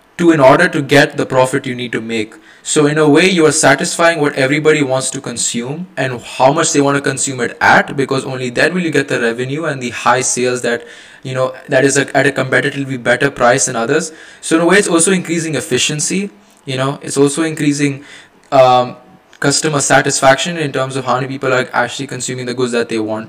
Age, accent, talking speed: 20-39, Indian, 220 wpm